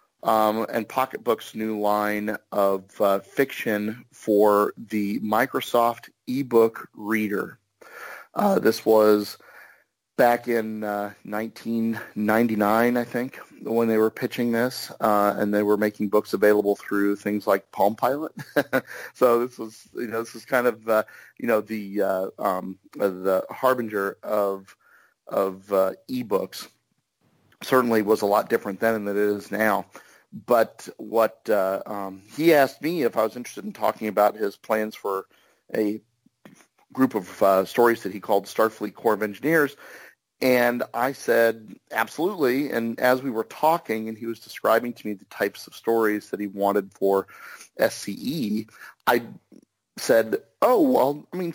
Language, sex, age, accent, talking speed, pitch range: English, male, 40-59, American, 150 wpm, 105-120 Hz